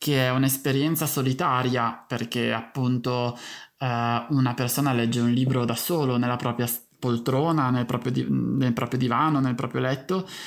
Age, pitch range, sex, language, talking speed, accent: 20-39, 130-175 Hz, male, Italian, 150 wpm, native